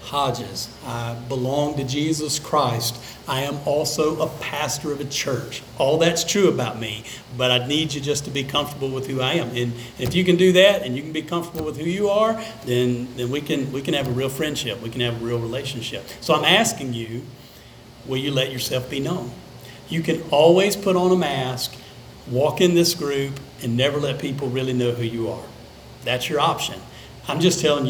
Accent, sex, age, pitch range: American, male, 50-69, 125-165 Hz